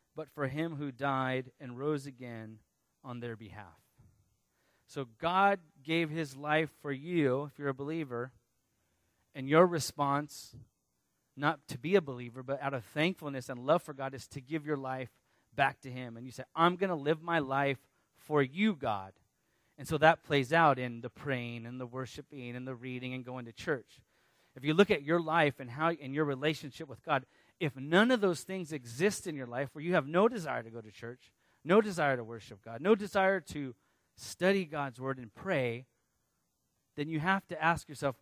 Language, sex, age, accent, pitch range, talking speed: English, male, 30-49, American, 125-160 Hz, 200 wpm